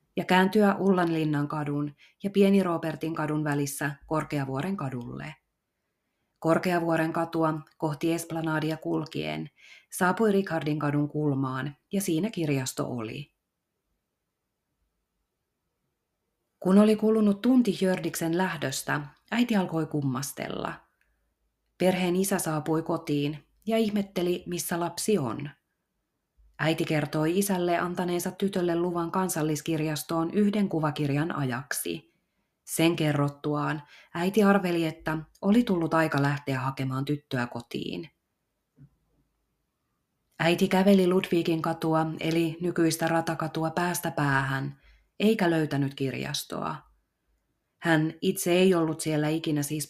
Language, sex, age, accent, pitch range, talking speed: Finnish, female, 30-49, native, 145-180 Hz, 100 wpm